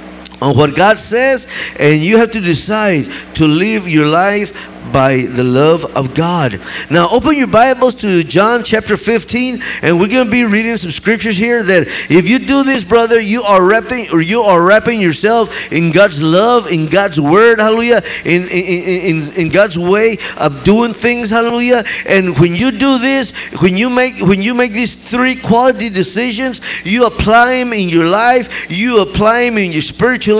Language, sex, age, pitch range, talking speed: English, male, 50-69, 185-245 Hz, 185 wpm